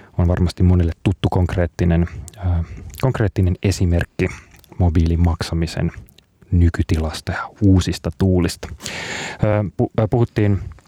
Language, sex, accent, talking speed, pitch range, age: Finnish, male, native, 85 wpm, 90-100 Hz, 30-49